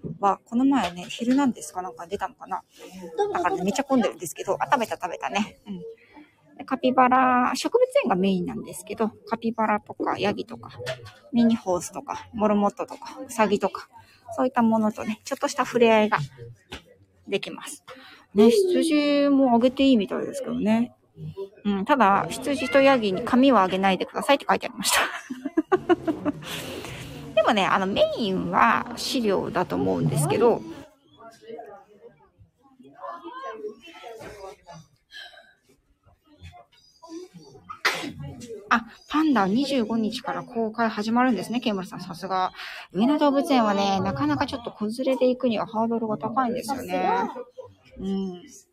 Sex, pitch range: female, 195-275 Hz